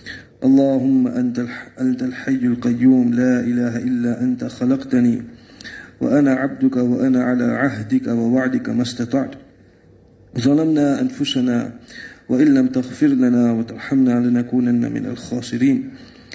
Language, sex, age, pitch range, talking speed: French, male, 50-69, 120-135 Hz, 100 wpm